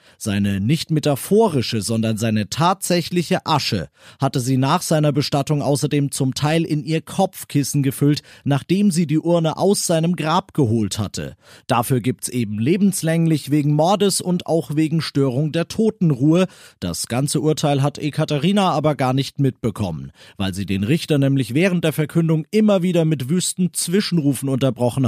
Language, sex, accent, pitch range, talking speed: German, male, German, 125-175 Hz, 155 wpm